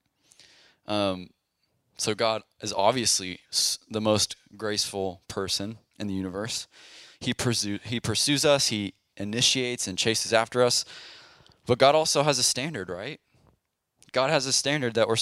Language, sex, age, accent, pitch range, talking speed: English, male, 20-39, American, 95-120 Hz, 140 wpm